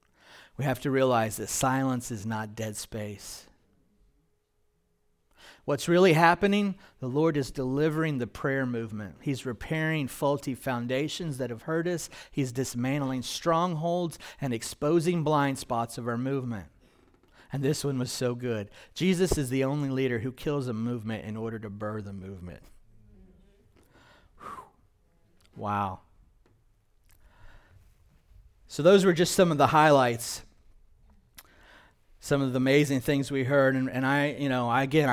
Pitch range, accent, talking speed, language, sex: 110-140 Hz, American, 140 wpm, English, male